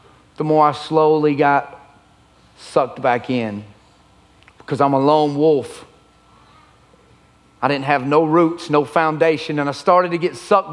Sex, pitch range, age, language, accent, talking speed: male, 135-195 Hz, 40-59, English, American, 145 wpm